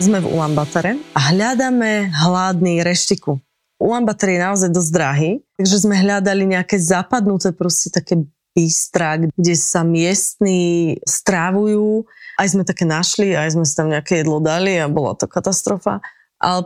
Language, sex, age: Slovak, female, 20-39